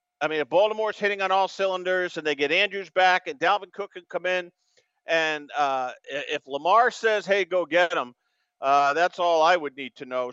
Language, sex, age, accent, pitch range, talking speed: English, male, 50-69, American, 155-205 Hz, 210 wpm